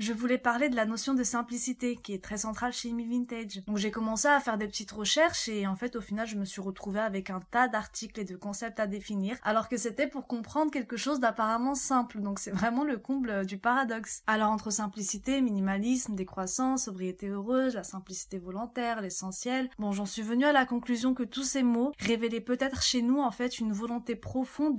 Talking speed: 215 wpm